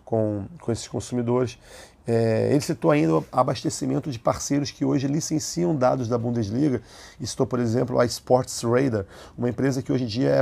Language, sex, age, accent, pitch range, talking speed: Portuguese, male, 40-59, Brazilian, 115-140 Hz, 180 wpm